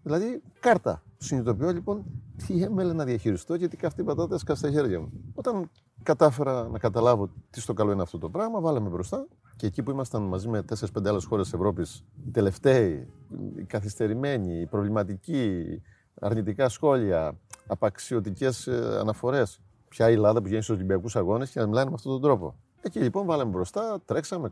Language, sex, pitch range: Greek, male, 105-150 Hz